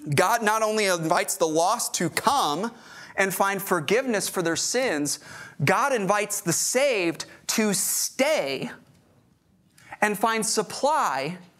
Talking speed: 120 wpm